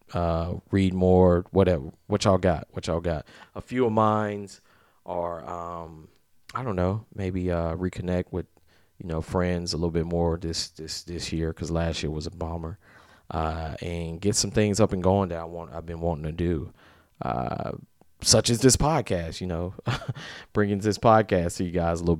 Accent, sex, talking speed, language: American, male, 195 wpm, English